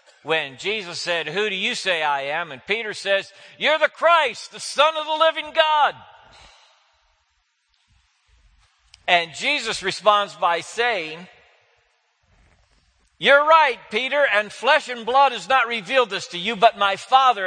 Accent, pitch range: American, 190-270 Hz